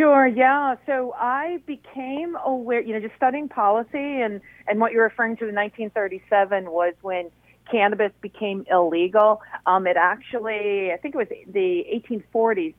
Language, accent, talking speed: English, American, 155 wpm